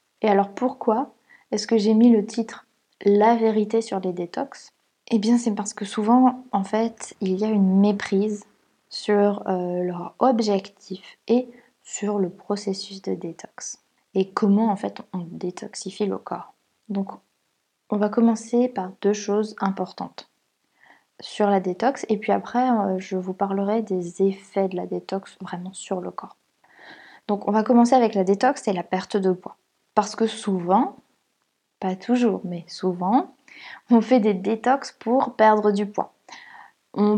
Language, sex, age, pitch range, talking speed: French, female, 20-39, 195-235 Hz, 160 wpm